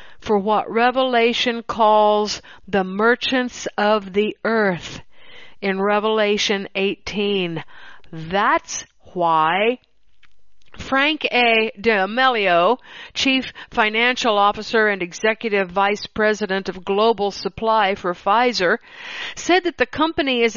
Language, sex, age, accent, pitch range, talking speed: English, female, 50-69, American, 200-245 Hz, 100 wpm